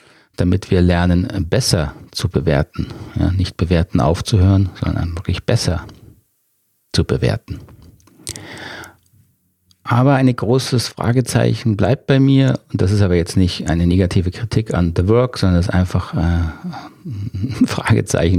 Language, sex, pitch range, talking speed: German, male, 90-115 Hz, 130 wpm